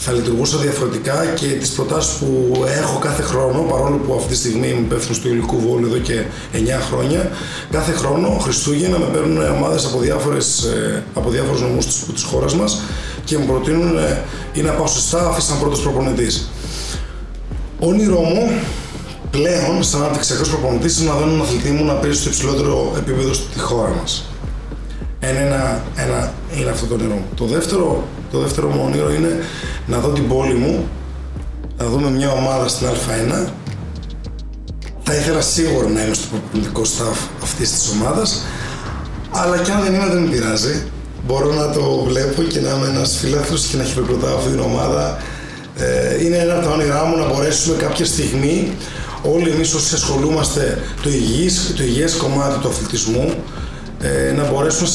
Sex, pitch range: male, 115-155 Hz